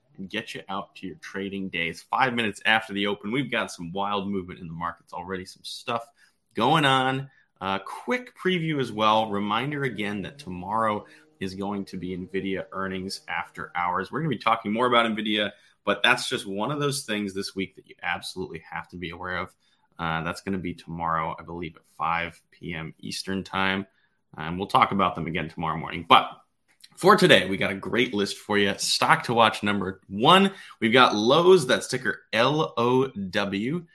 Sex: male